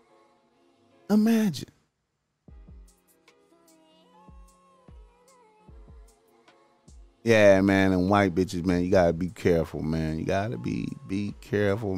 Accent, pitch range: American, 90-110 Hz